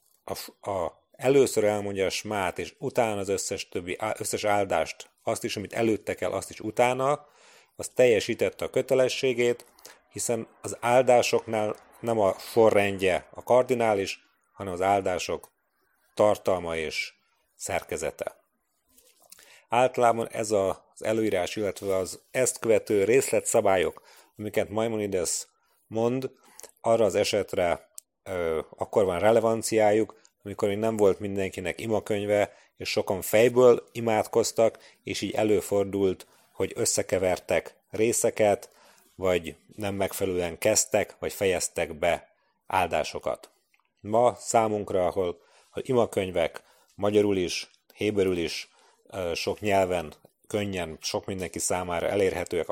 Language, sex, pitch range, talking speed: Hungarian, male, 95-120 Hz, 110 wpm